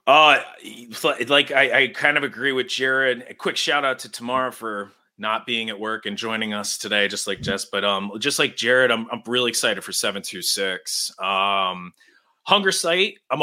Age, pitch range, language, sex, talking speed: 30-49, 100-130 Hz, English, male, 190 wpm